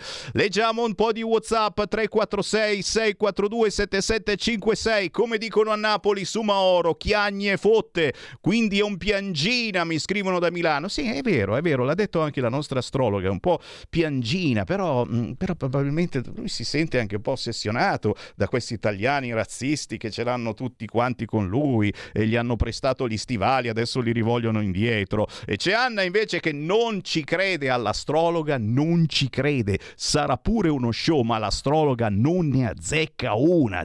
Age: 50-69